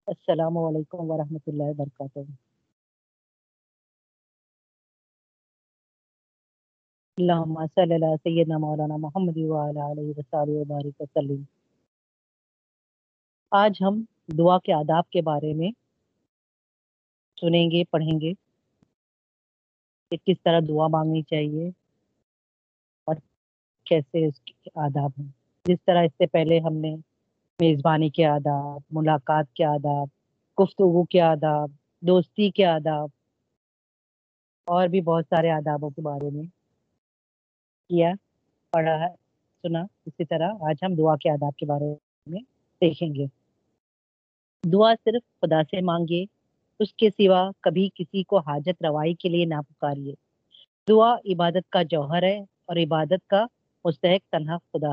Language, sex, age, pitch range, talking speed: Urdu, female, 30-49, 150-180 Hz, 100 wpm